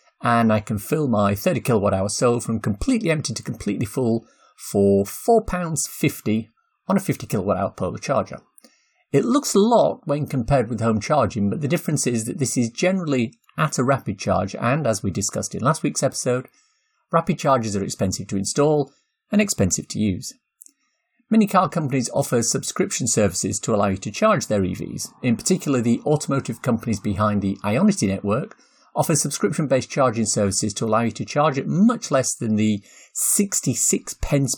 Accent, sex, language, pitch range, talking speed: British, male, English, 105-160 Hz, 170 wpm